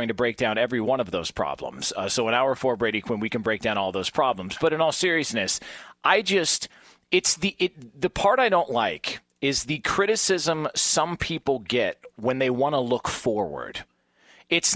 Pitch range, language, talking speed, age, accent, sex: 130-180 Hz, English, 200 wpm, 40-59, American, male